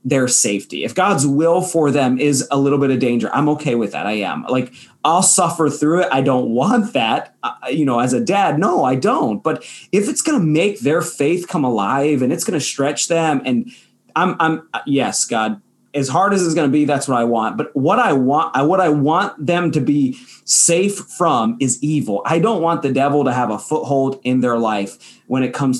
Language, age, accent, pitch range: English, 30-49, American, 125-170 Hz